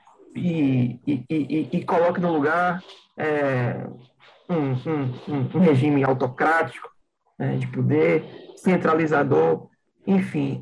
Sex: male